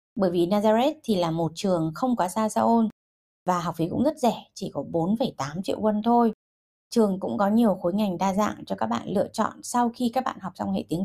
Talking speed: 245 wpm